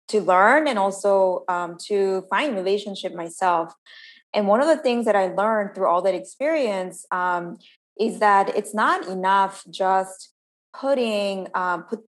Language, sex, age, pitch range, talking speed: English, female, 20-39, 180-225 Hz, 155 wpm